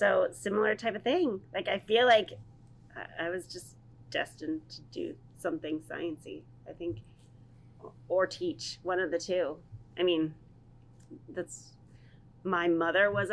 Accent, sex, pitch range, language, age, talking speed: American, female, 155-210 Hz, English, 30-49, 140 wpm